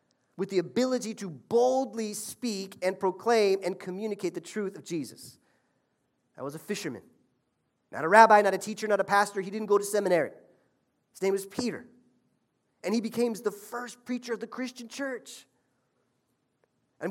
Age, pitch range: 30-49, 145-220 Hz